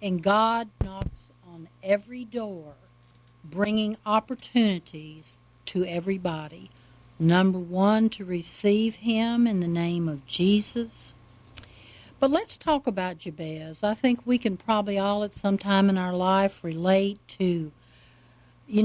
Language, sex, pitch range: English, female, 165-230 Hz